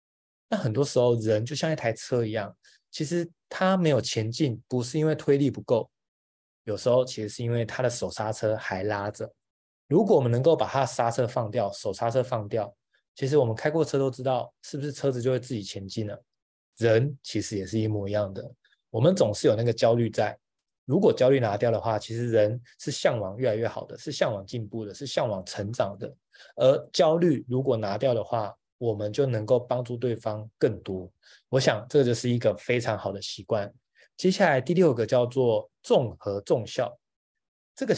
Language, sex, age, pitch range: Chinese, male, 20-39, 110-140 Hz